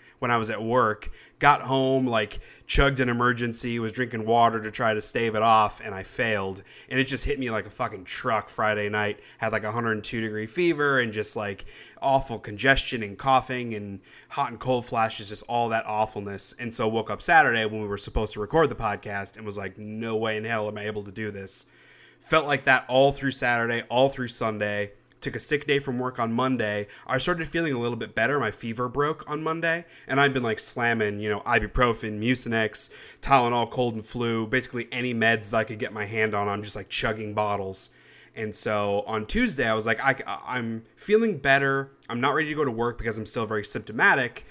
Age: 20-39